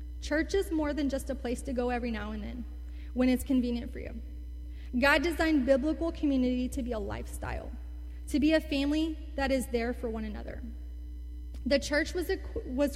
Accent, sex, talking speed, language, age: American, female, 185 wpm, English, 30-49